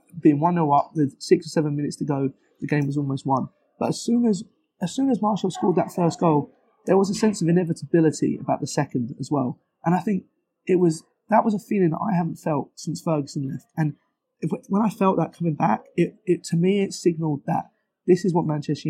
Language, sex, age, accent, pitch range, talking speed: English, male, 20-39, British, 150-180 Hz, 230 wpm